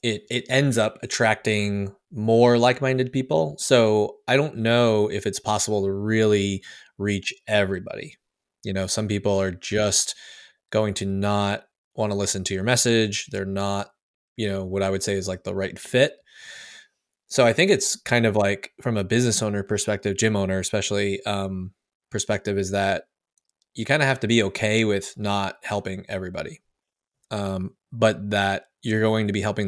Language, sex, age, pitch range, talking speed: English, male, 20-39, 95-110 Hz, 170 wpm